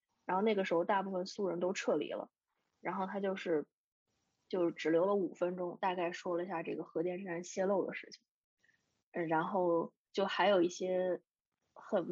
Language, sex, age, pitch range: Chinese, female, 20-39, 180-205 Hz